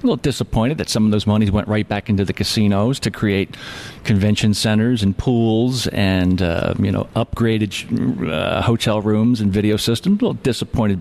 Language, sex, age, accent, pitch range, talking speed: English, male, 40-59, American, 105-155 Hz, 185 wpm